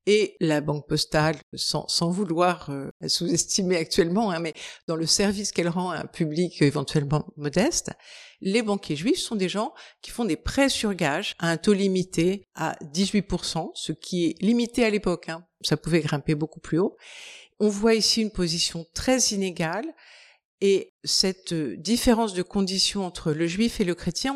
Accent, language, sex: French, French, female